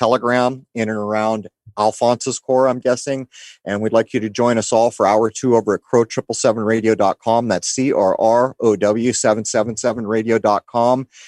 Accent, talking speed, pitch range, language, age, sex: American, 185 wpm, 105-120 Hz, English, 30-49, male